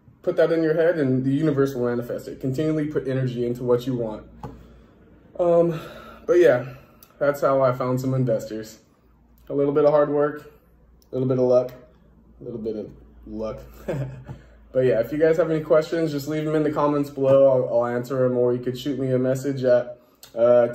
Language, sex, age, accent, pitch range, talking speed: English, male, 20-39, American, 120-145 Hz, 205 wpm